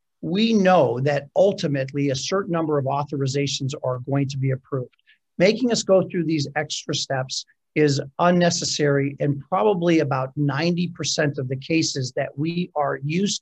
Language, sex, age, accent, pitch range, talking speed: English, male, 50-69, American, 140-175 Hz, 150 wpm